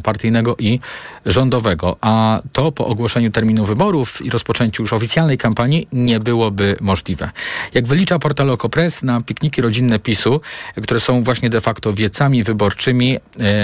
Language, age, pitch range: Polish, 40-59, 105-130 Hz